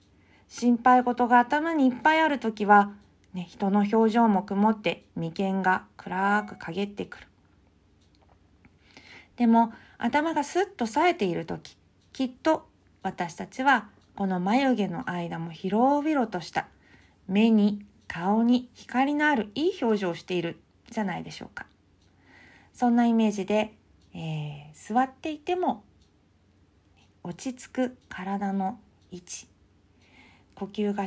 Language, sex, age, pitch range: Japanese, female, 40-59, 155-245 Hz